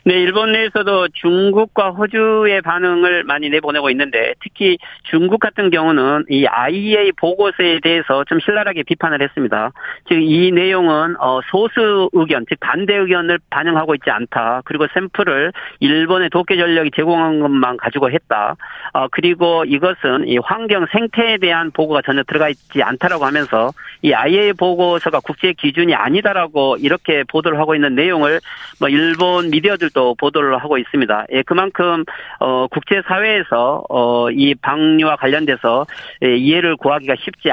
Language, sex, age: Korean, male, 40-59